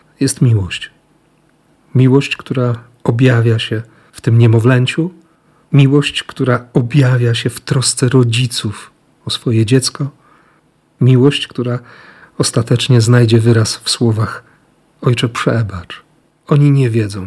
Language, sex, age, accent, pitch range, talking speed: Polish, male, 40-59, native, 115-140 Hz, 110 wpm